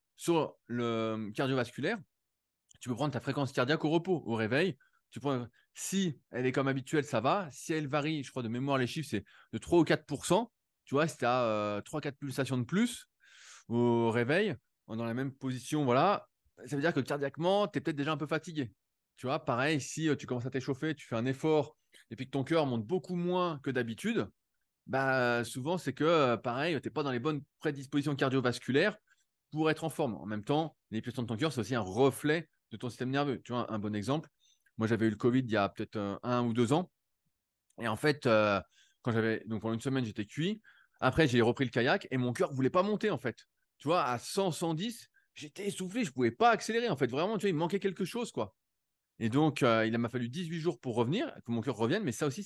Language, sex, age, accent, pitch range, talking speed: French, male, 20-39, French, 120-160 Hz, 235 wpm